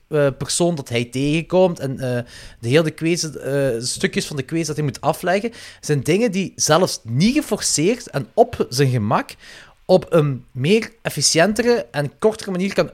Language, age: Dutch, 30-49